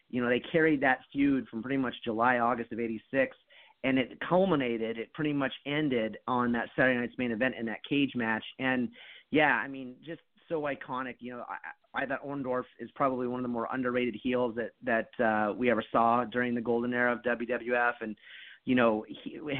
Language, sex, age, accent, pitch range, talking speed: English, male, 30-49, American, 120-135 Hz, 205 wpm